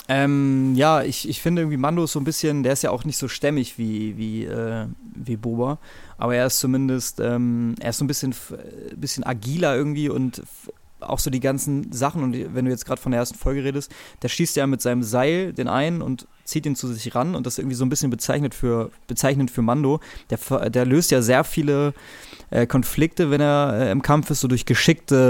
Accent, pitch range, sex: German, 120-145 Hz, male